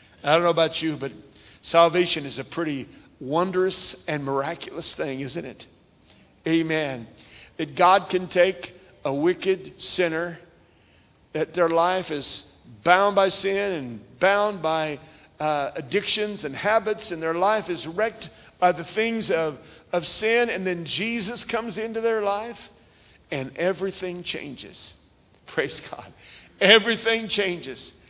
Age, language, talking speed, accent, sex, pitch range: 50-69, English, 135 wpm, American, male, 150-215 Hz